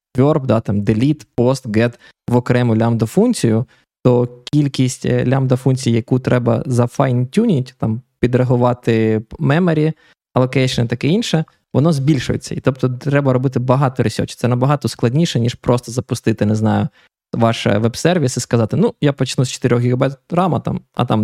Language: Ukrainian